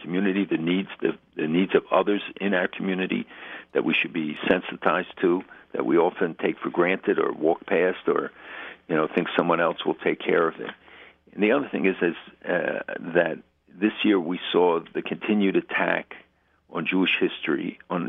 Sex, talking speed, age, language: male, 180 wpm, 60-79, English